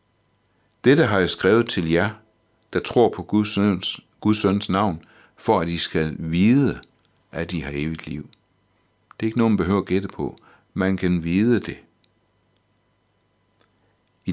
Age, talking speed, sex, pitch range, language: 60-79, 160 wpm, male, 85-110 Hz, Danish